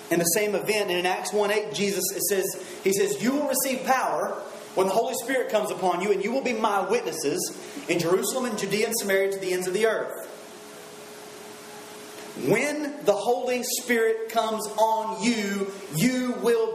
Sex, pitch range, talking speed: male, 200-265 Hz, 180 wpm